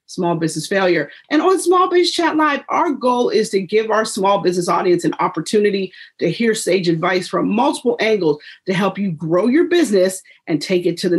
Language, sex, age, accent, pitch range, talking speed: English, female, 40-59, American, 185-265 Hz, 205 wpm